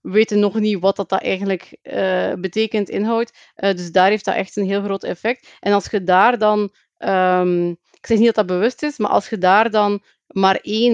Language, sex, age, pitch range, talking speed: Dutch, female, 30-49, 190-225 Hz, 215 wpm